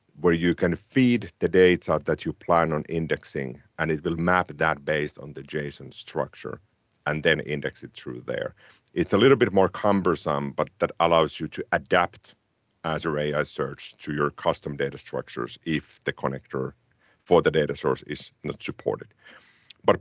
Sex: male